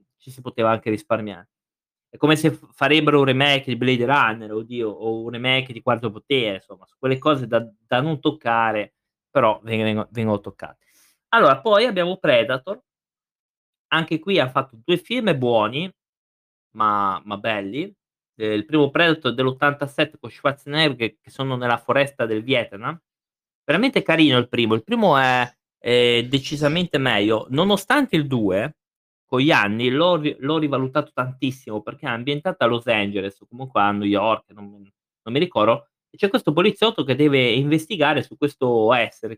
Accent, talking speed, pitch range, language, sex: native, 155 wpm, 110-150 Hz, Italian, male